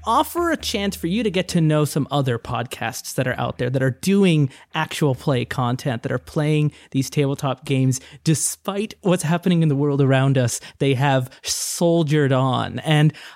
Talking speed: 185 wpm